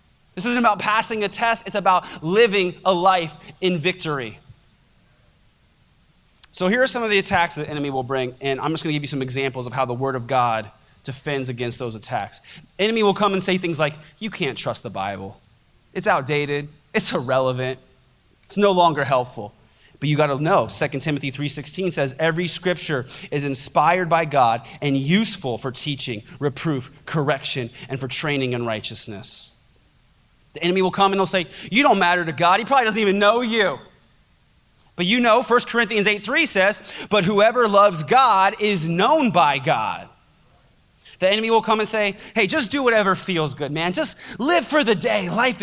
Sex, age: male, 20-39